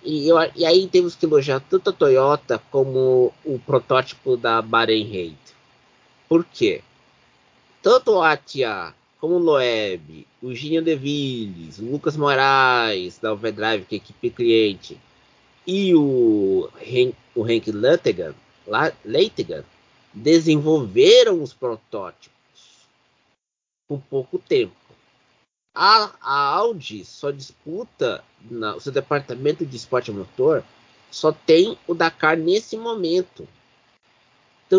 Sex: male